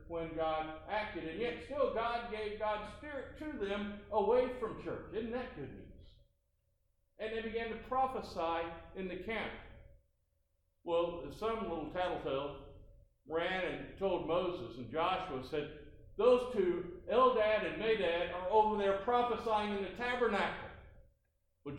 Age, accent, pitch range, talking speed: 60-79, American, 150-225 Hz, 140 wpm